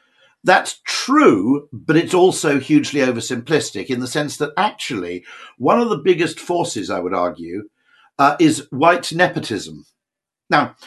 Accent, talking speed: British, 140 wpm